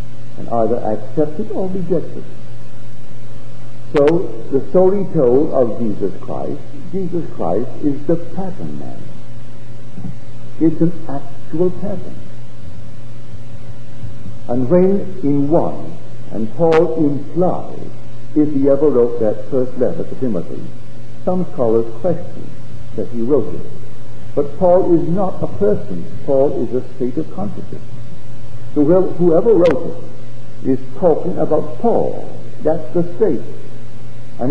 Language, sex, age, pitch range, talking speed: English, male, 60-79, 115-170 Hz, 120 wpm